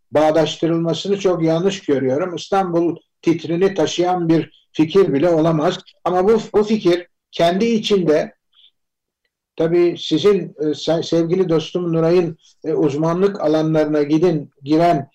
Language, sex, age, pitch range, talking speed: Turkish, male, 60-79, 155-195 Hz, 110 wpm